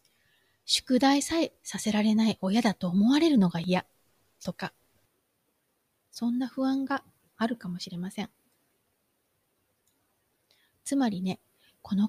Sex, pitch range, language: female, 195-270 Hz, Japanese